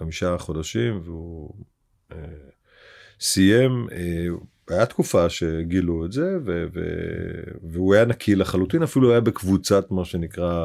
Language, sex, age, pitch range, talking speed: Hebrew, male, 40-59, 85-110 Hz, 125 wpm